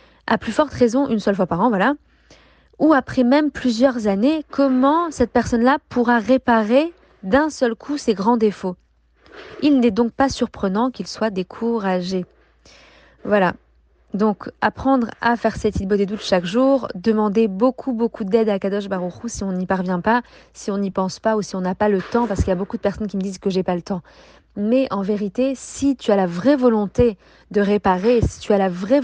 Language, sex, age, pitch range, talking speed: French, female, 20-39, 200-245 Hz, 210 wpm